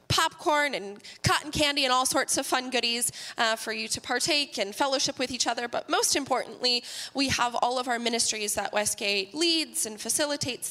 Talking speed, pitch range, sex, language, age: 190 wpm, 220-260 Hz, female, English, 20-39